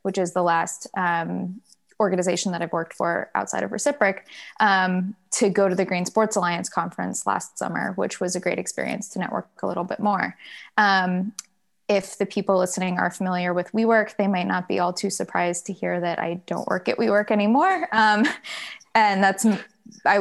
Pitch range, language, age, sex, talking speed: 180-210 Hz, English, 20-39, female, 190 wpm